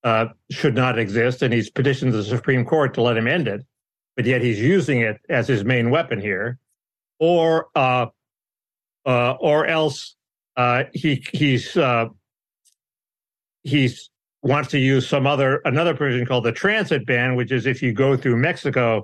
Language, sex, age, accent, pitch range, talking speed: English, male, 60-79, American, 115-145 Hz, 165 wpm